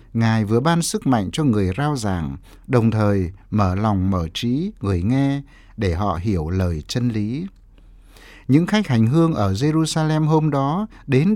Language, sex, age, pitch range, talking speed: Vietnamese, male, 60-79, 95-155 Hz, 170 wpm